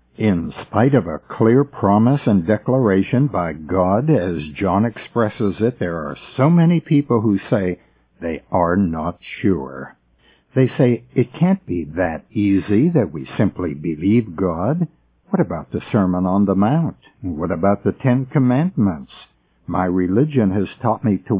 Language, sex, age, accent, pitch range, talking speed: English, male, 60-79, American, 90-130 Hz, 155 wpm